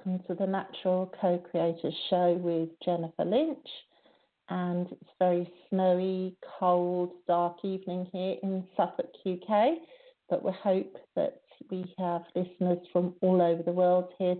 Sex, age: female, 50-69